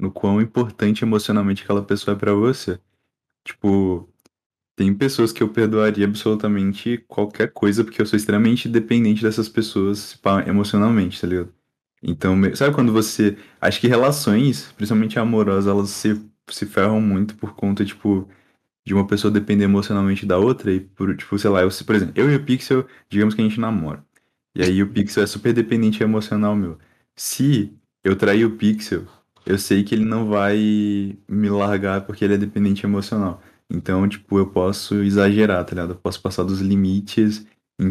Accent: Brazilian